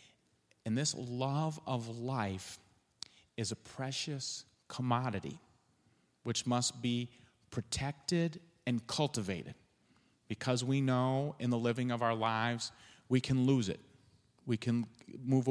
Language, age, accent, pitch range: English, 40-59, American, 110-130 Hz